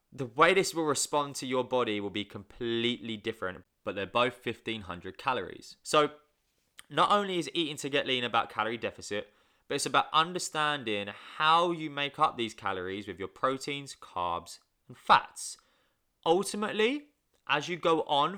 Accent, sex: British, male